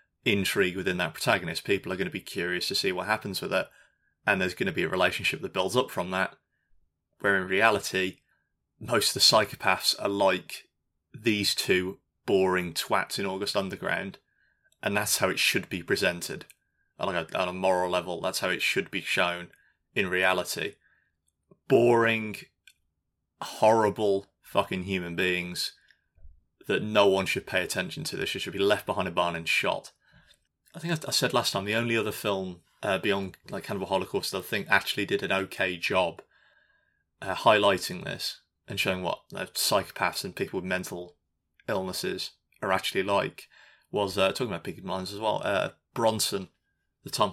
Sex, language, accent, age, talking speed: male, English, British, 20-39, 175 wpm